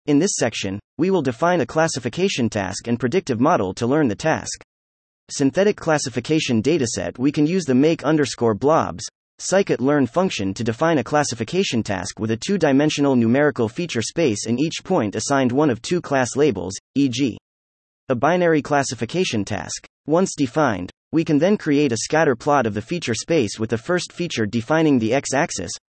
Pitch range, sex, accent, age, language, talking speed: 110-160 Hz, male, American, 30-49, English, 170 wpm